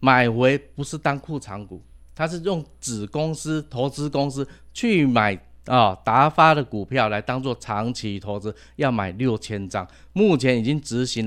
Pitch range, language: 110-150 Hz, Chinese